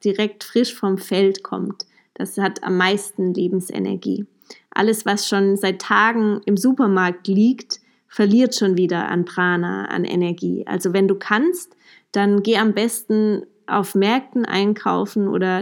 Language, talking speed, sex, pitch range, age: German, 140 wpm, female, 190-230 Hz, 20-39